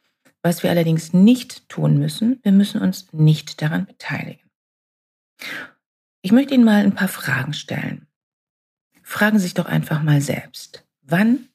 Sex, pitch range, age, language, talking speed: female, 145-200 Hz, 50-69, German, 145 wpm